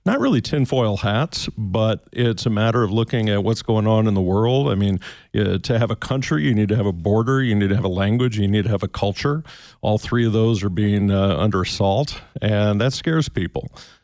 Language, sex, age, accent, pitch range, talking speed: English, male, 50-69, American, 100-120 Hz, 230 wpm